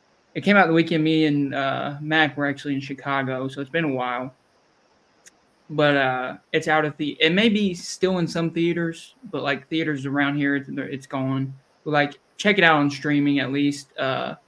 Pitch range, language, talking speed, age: 140-160 Hz, English, 205 wpm, 20-39